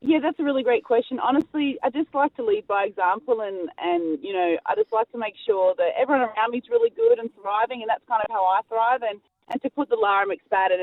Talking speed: 260 wpm